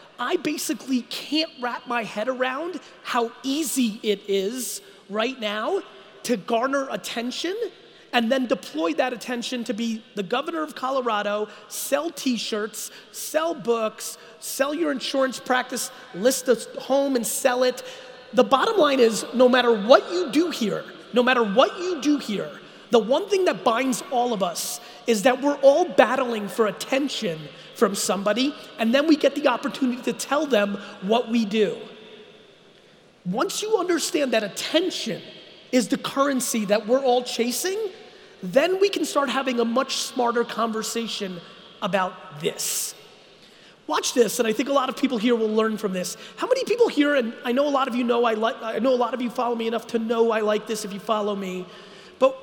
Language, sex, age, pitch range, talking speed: English, male, 30-49, 220-275 Hz, 180 wpm